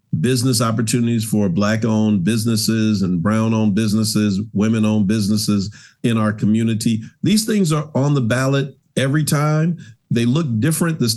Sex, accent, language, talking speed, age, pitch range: male, American, English, 150 wpm, 50-69, 110-145 Hz